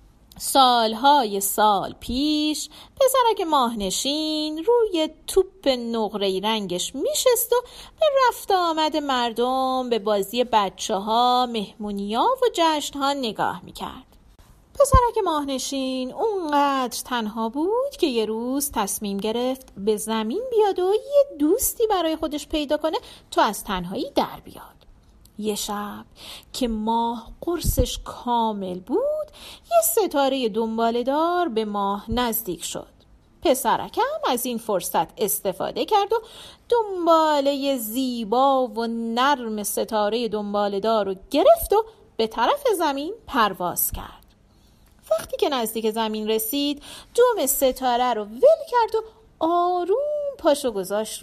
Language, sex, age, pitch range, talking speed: Persian, female, 40-59, 220-330 Hz, 115 wpm